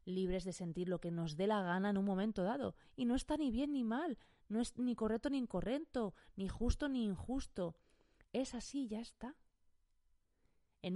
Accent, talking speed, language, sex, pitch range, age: Spanish, 195 wpm, Spanish, female, 165-240 Hz, 30-49